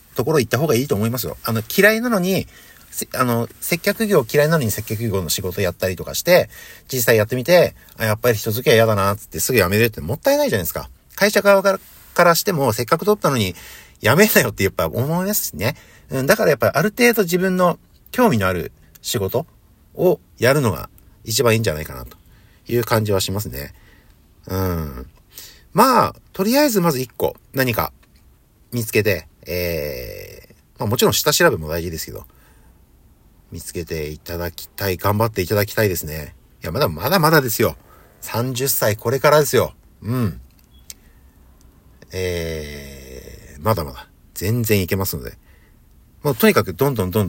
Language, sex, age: Japanese, male, 50-69